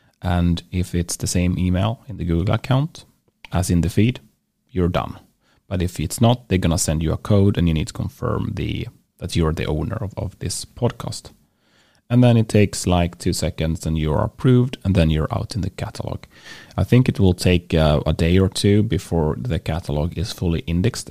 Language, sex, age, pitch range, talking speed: English, male, 30-49, 85-115 Hz, 210 wpm